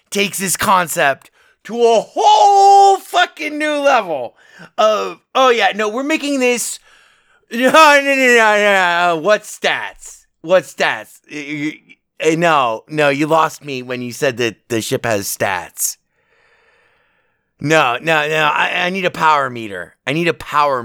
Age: 30-49